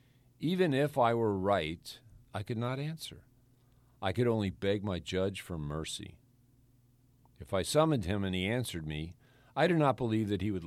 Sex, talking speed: male, 180 wpm